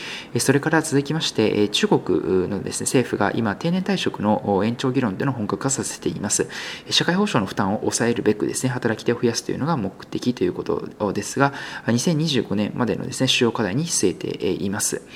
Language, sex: Japanese, male